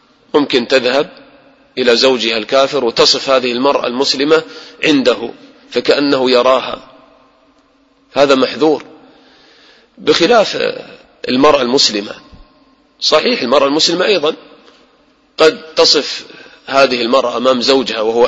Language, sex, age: English, male, 30-49